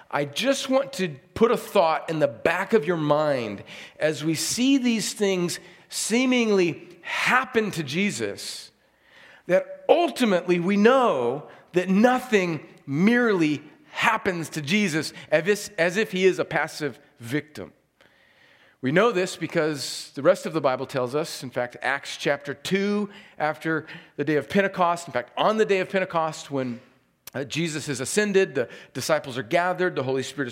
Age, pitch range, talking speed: 40-59, 155-200 Hz, 155 wpm